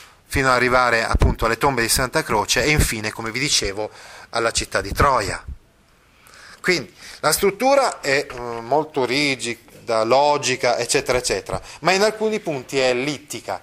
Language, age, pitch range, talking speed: Italian, 30-49, 105-140 Hz, 145 wpm